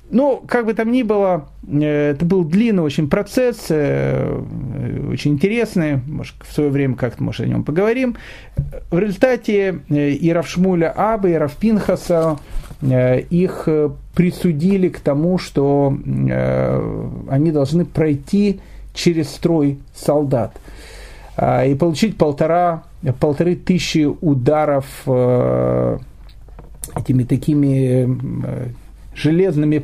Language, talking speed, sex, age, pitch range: Russian, 100 wpm, male, 40-59, 135-180 Hz